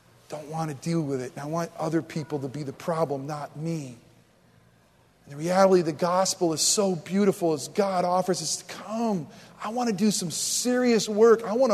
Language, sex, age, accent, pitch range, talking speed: English, male, 40-59, American, 155-190 Hz, 215 wpm